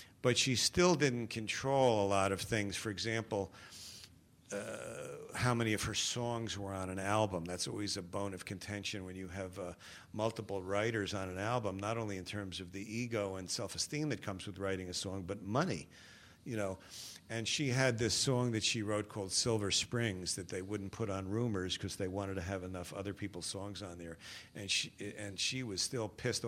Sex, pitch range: male, 100-115 Hz